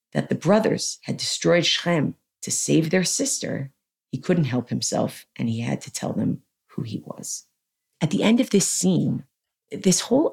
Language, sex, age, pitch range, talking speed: English, female, 40-59, 145-215 Hz, 180 wpm